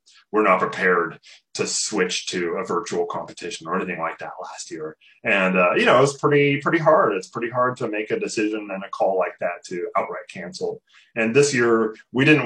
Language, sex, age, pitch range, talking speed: English, male, 30-49, 95-140 Hz, 210 wpm